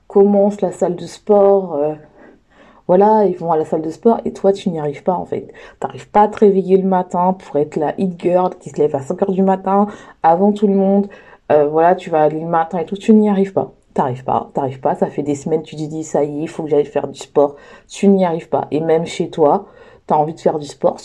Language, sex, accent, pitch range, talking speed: French, female, French, 170-215 Hz, 275 wpm